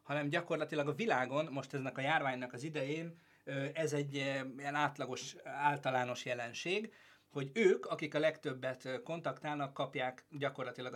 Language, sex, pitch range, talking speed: Hungarian, male, 125-150 Hz, 130 wpm